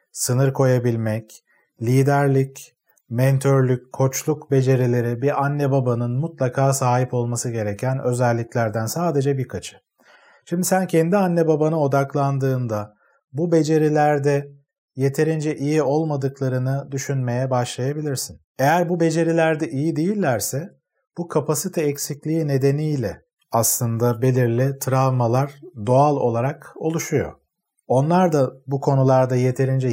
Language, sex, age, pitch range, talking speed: Turkish, male, 40-59, 125-150 Hz, 100 wpm